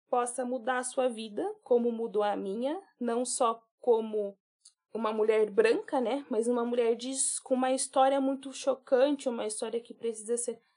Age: 20-39